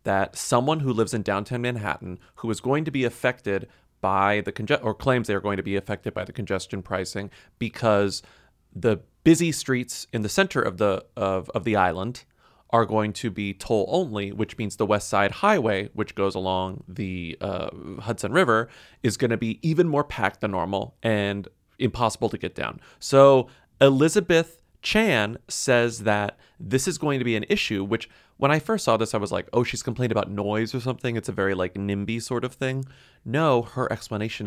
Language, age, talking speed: English, 30-49, 195 wpm